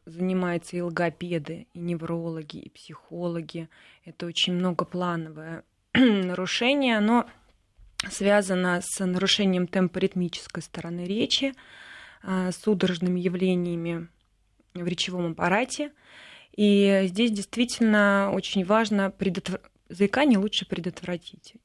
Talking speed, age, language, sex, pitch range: 90 wpm, 20-39, Russian, female, 175-200 Hz